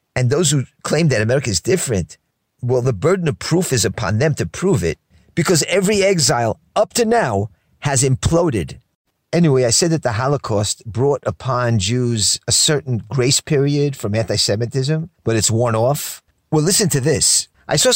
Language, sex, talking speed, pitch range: English, male, 175 wpm, 115-165 Hz